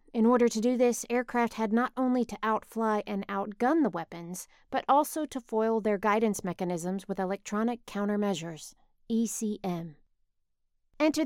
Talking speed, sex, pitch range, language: 145 wpm, female, 185-235 Hz, English